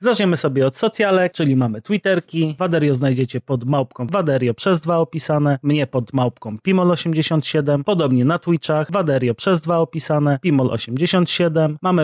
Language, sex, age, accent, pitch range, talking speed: Polish, male, 30-49, native, 130-175 Hz, 140 wpm